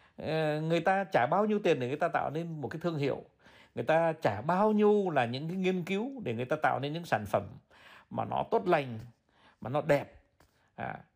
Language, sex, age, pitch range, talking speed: Vietnamese, male, 60-79, 115-165 Hz, 220 wpm